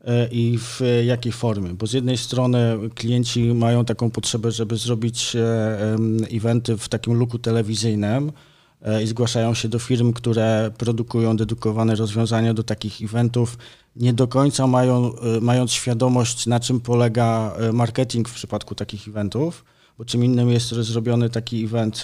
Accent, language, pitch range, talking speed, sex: native, Polish, 110-120 Hz, 140 wpm, male